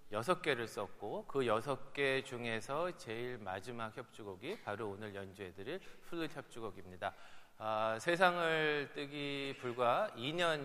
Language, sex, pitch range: Korean, male, 110-165 Hz